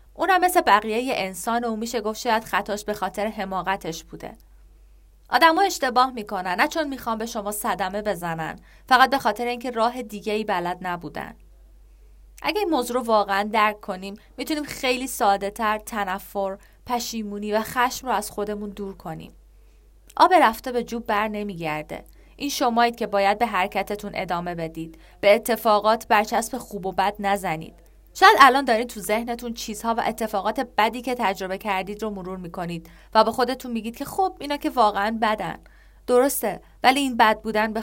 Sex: female